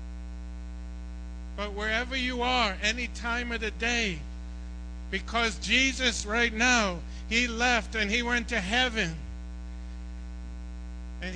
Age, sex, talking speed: 50-69, male, 110 wpm